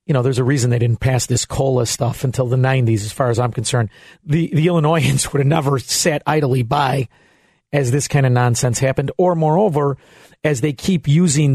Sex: male